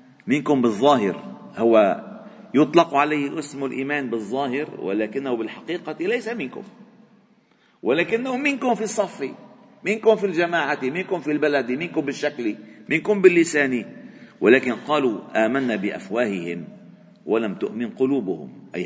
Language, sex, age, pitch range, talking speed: Arabic, male, 50-69, 130-205 Hz, 110 wpm